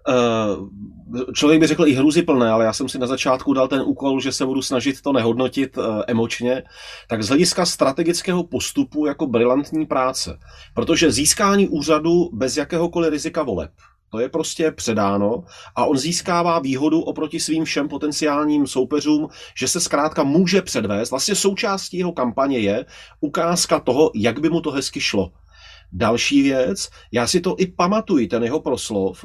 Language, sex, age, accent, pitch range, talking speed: Czech, male, 30-49, native, 130-170 Hz, 160 wpm